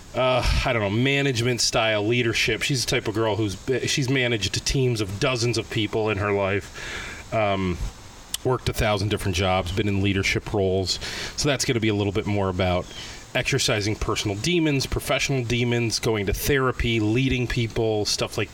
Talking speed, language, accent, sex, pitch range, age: 180 wpm, English, American, male, 105-130 Hz, 30-49